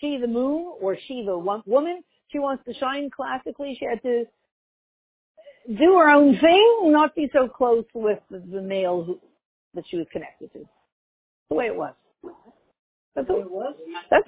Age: 50-69